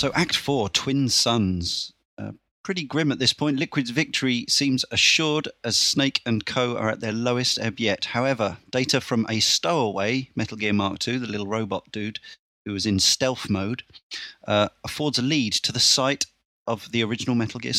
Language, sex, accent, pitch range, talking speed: English, male, British, 105-140 Hz, 185 wpm